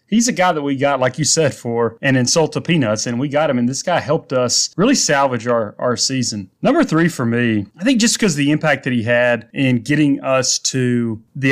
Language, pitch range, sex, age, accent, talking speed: English, 120-150 Hz, male, 30-49, American, 240 wpm